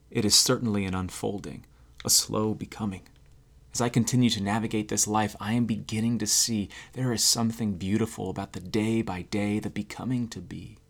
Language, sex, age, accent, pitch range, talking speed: English, male, 30-49, American, 105-125 Hz, 160 wpm